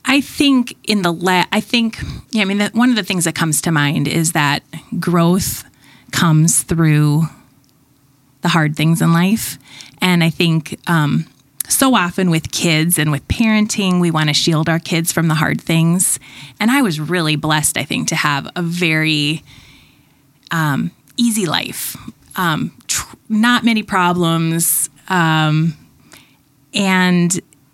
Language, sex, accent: English, female, American